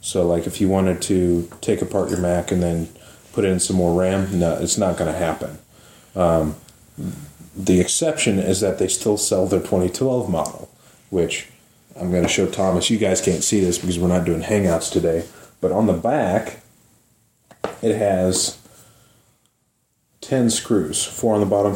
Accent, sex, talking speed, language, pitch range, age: American, male, 170 wpm, English, 85-100 Hz, 30-49